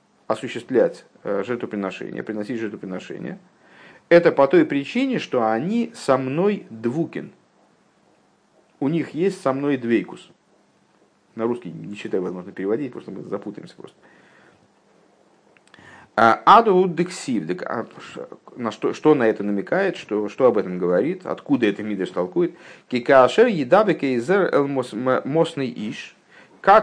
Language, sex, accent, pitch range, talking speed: Russian, male, native, 115-175 Hz, 105 wpm